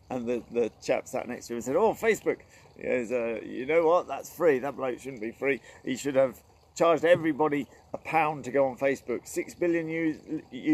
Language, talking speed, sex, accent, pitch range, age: English, 210 wpm, male, British, 110-140 Hz, 50-69